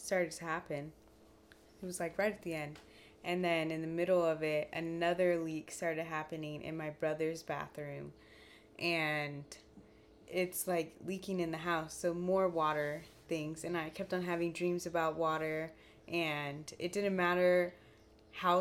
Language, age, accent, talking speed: English, 20-39, American, 160 wpm